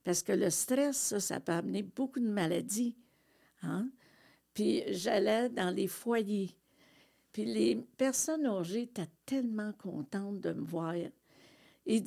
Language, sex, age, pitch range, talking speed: French, female, 60-79, 180-250 Hz, 140 wpm